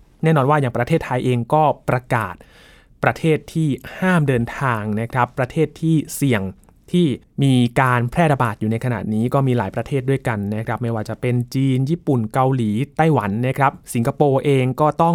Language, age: Thai, 20-39